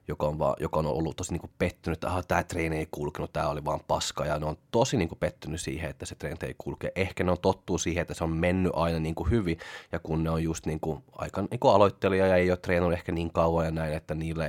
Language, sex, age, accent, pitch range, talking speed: Finnish, male, 20-39, native, 80-90 Hz, 230 wpm